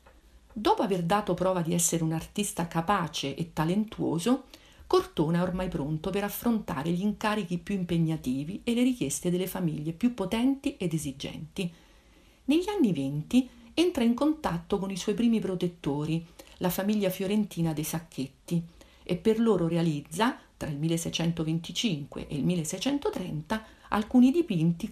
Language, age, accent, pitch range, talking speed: Italian, 50-69, native, 165-220 Hz, 140 wpm